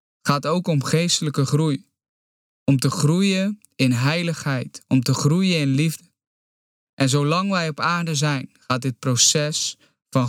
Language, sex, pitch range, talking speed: Dutch, male, 135-165 Hz, 145 wpm